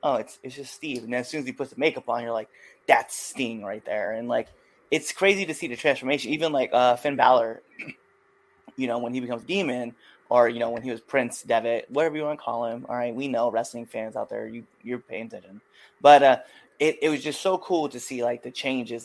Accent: American